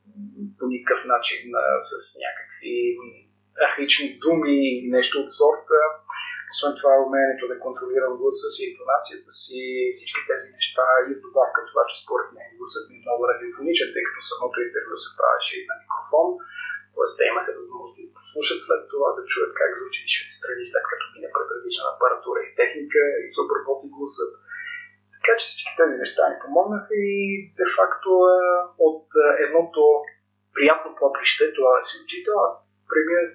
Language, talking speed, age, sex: Bulgarian, 165 wpm, 30-49, male